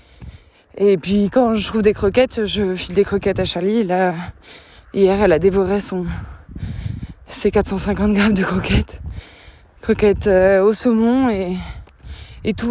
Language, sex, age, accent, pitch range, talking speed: French, female, 20-39, French, 175-235 Hz, 145 wpm